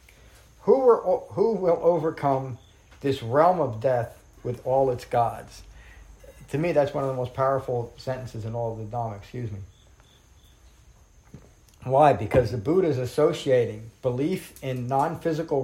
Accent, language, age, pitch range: American, English, 50-69, 110-140 Hz